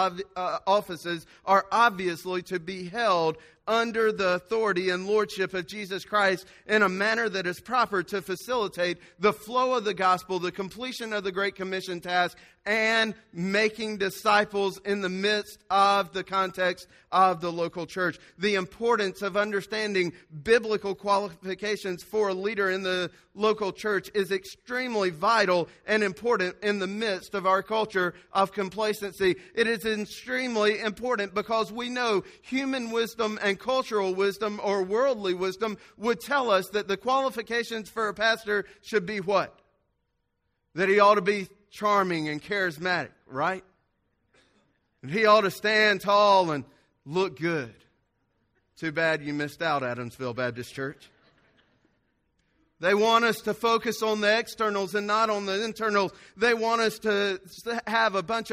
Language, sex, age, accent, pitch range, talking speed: English, male, 40-59, American, 185-220 Hz, 150 wpm